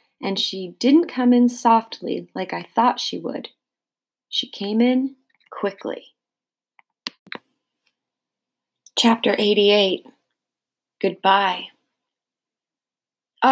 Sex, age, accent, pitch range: female, 30-49, American, 190-245 Hz